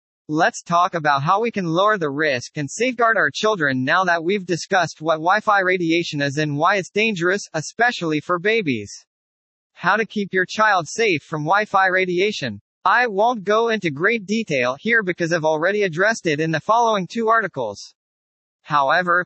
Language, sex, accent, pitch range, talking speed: English, male, American, 155-215 Hz, 170 wpm